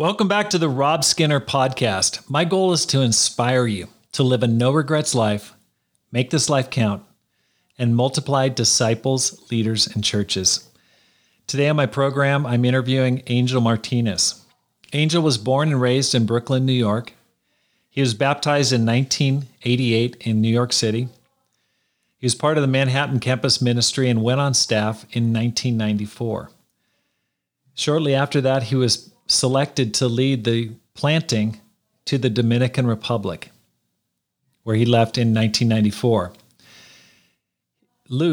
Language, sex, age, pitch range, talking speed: English, male, 40-59, 115-135 Hz, 140 wpm